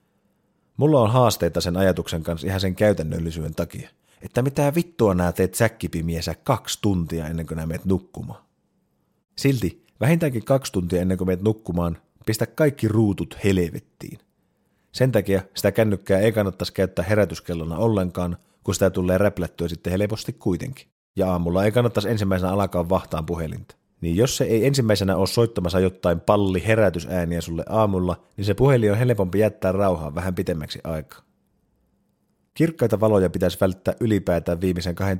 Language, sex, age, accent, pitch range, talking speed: Finnish, male, 30-49, native, 90-110 Hz, 150 wpm